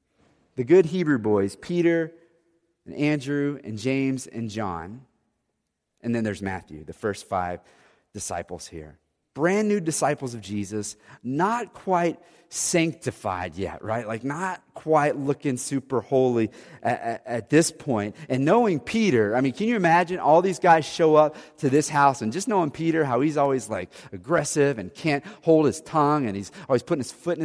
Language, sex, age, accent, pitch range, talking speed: English, male, 30-49, American, 125-185 Hz, 170 wpm